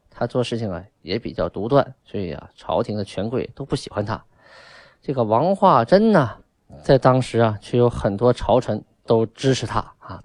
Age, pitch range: 20-39, 110-150 Hz